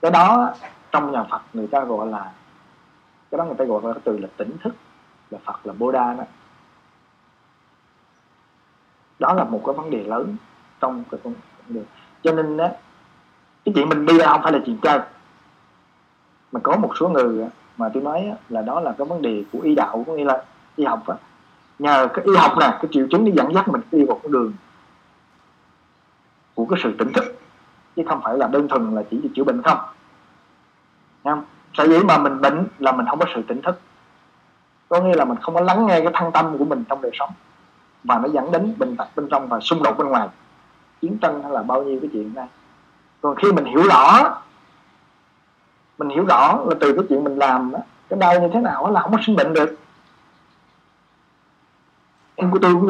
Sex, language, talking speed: male, Vietnamese, 210 wpm